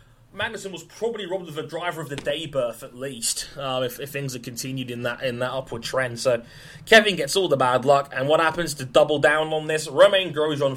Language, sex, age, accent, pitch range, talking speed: English, male, 20-39, British, 125-165 Hz, 235 wpm